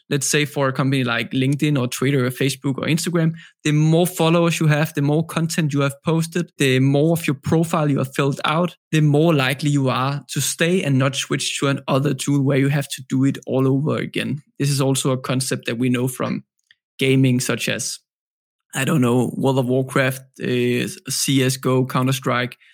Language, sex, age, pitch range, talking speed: English, male, 20-39, 135-160 Hz, 205 wpm